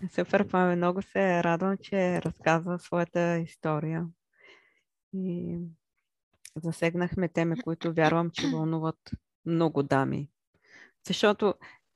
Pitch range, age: 165-200 Hz, 20-39